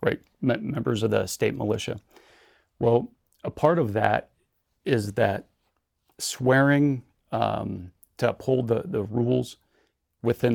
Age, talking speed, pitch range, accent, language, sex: 30-49, 120 wpm, 95-120 Hz, American, English, male